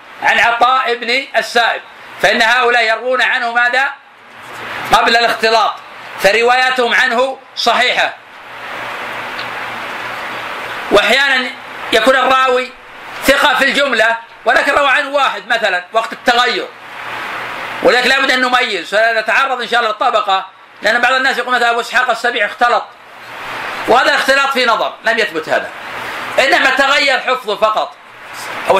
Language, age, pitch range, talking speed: Arabic, 50-69, 225-255 Hz, 120 wpm